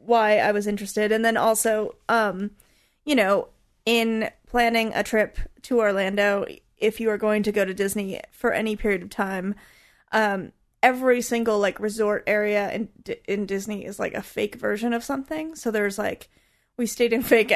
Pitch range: 210-250 Hz